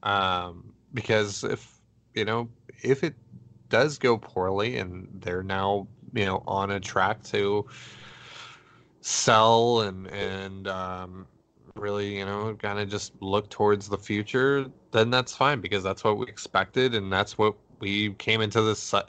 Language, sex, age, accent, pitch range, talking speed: English, male, 20-39, American, 95-115 Hz, 150 wpm